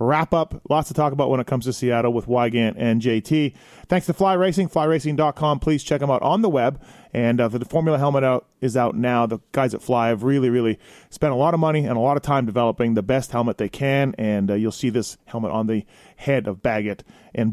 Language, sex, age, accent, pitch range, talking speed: English, male, 30-49, American, 120-155 Hz, 245 wpm